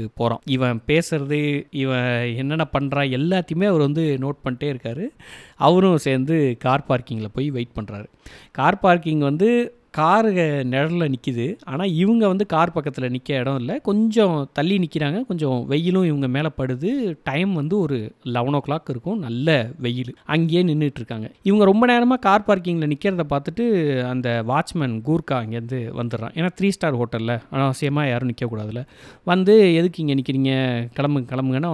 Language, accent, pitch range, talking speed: Tamil, native, 130-175 Hz, 150 wpm